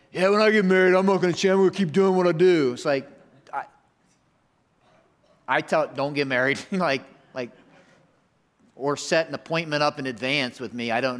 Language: English